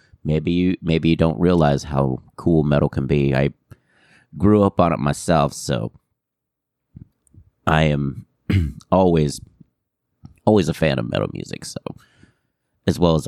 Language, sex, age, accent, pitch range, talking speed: English, male, 30-49, American, 70-85 Hz, 140 wpm